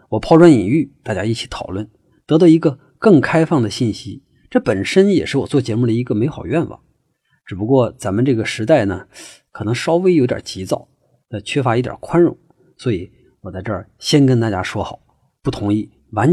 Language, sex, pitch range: Chinese, male, 105-145 Hz